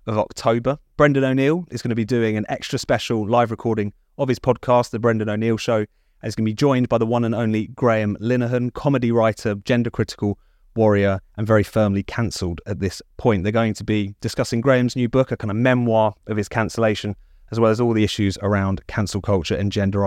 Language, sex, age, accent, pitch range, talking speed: English, male, 30-49, British, 105-125 Hz, 215 wpm